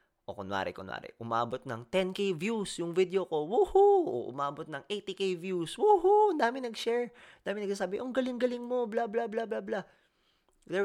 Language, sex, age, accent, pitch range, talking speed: Filipino, male, 20-39, native, 120-180 Hz, 160 wpm